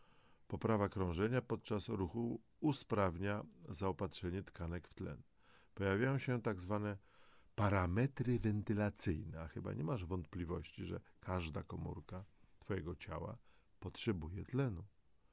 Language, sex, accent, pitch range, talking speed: Polish, male, native, 90-115 Hz, 105 wpm